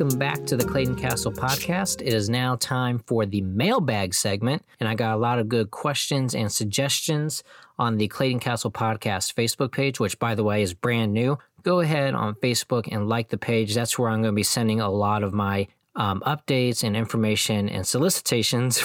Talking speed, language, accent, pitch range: 205 wpm, English, American, 105-130 Hz